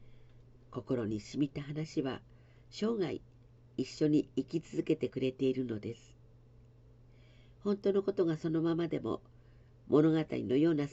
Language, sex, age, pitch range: Japanese, female, 50-69, 120-155 Hz